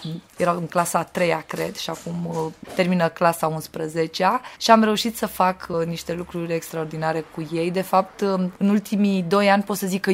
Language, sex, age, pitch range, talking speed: English, female, 20-39, 165-200 Hz, 205 wpm